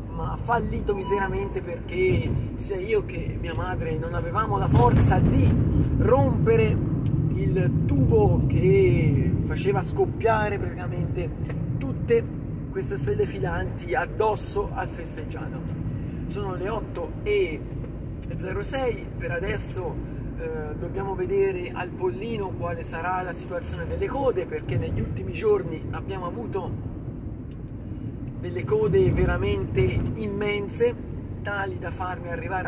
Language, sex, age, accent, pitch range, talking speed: Italian, male, 30-49, native, 120-190 Hz, 105 wpm